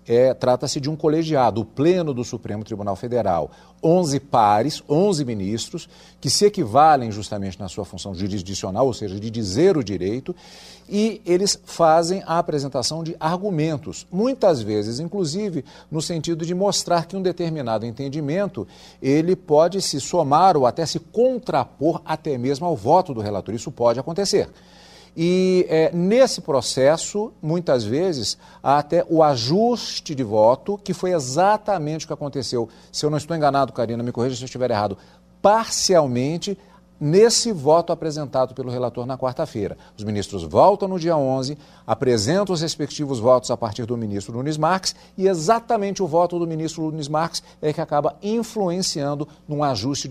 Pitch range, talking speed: 125-175 Hz, 155 wpm